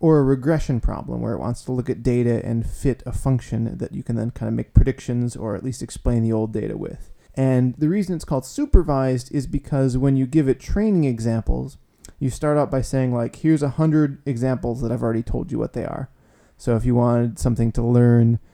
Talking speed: 225 wpm